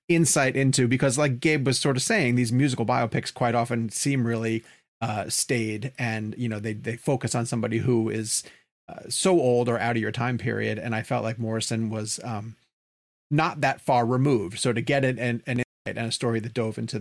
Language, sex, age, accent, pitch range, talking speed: English, male, 30-49, American, 110-135 Hz, 210 wpm